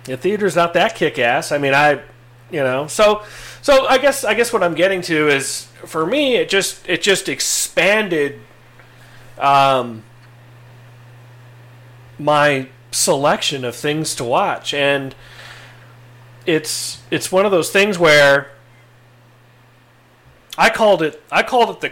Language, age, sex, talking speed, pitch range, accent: English, 40-59, male, 140 wpm, 120-160 Hz, American